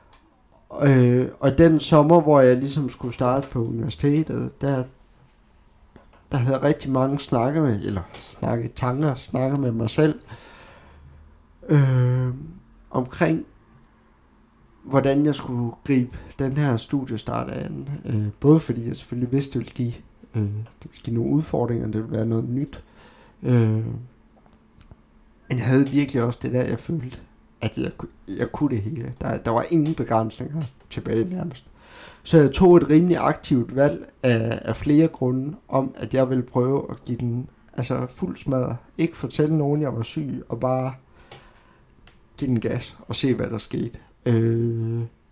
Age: 60-79